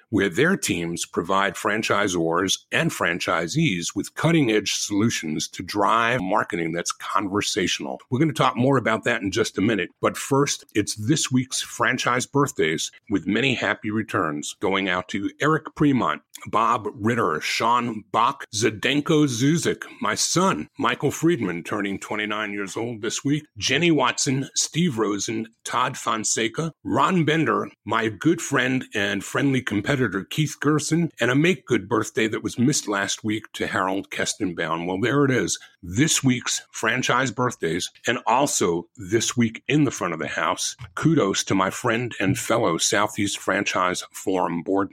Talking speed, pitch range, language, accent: 150 wpm, 100-140 Hz, English, American